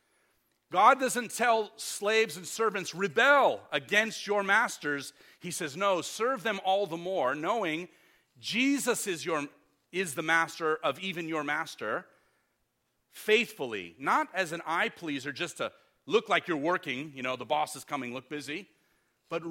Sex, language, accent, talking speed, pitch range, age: male, English, American, 155 wpm, 155-215 Hz, 40-59